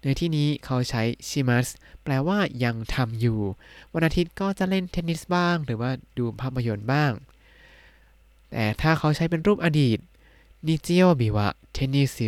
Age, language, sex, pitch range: 20-39, Thai, male, 115-150 Hz